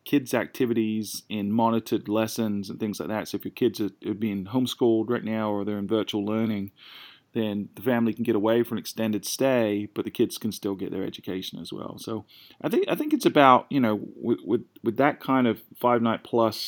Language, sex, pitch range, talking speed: English, male, 105-120 Hz, 210 wpm